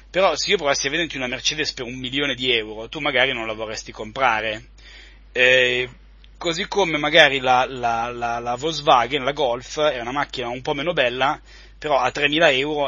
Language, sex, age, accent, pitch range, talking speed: Italian, male, 30-49, native, 125-155 Hz, 180 wpm